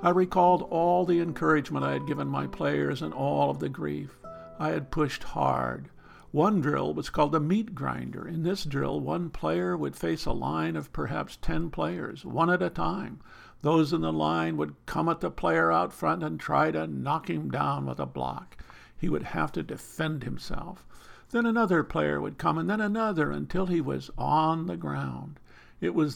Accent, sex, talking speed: American, male, 195 wpm